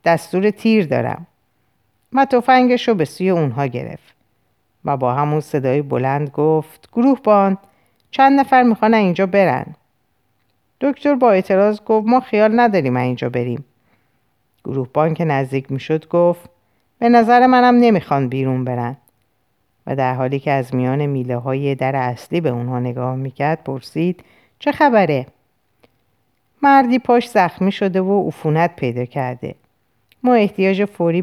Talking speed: 135 wpm